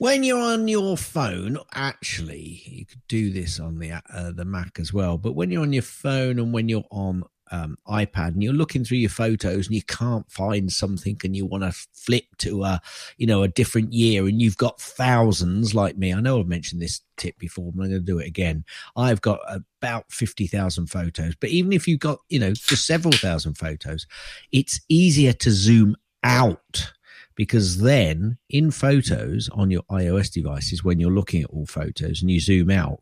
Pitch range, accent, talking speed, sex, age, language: 90-120 Hz, British, 200 wpm, male, 50-69, English